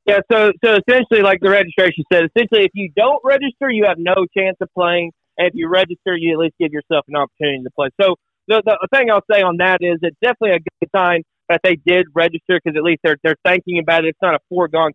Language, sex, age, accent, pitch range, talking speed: English, male, 30-49, American, 160-190 Hz, 250 wpm